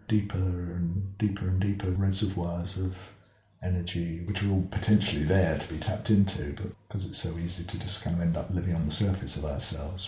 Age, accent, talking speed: 50-69, British, 200 wpm